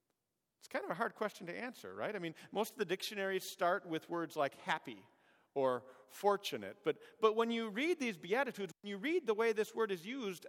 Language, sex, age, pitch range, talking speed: English, male, 40-59, 145-215 Hz, 215 wpm